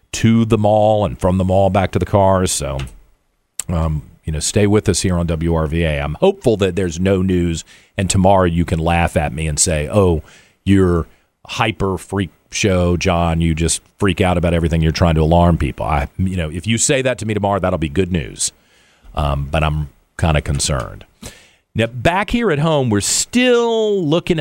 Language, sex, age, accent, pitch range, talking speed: English, male, 40-59, American, 85-120 Hz, 200 wpm